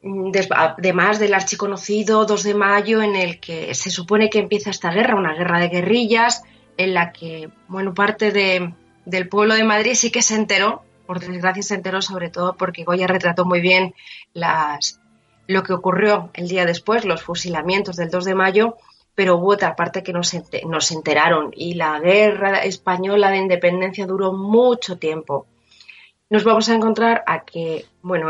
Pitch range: 175-210 Hz